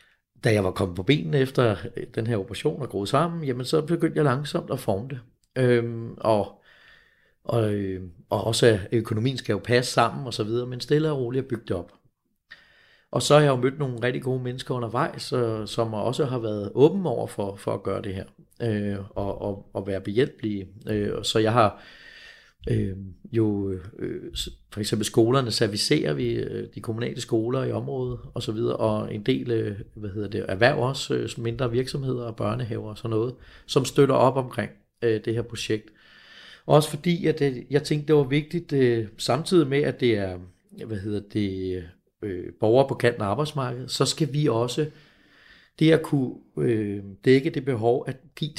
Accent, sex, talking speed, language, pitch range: native, male, 195 wpm, Danish, 105-135 Hz